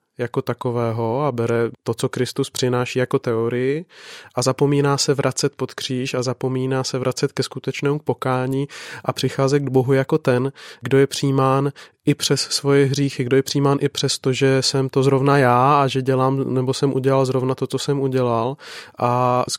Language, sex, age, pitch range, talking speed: Czech, male, 20-39, 125-135 Hz, 185 wpm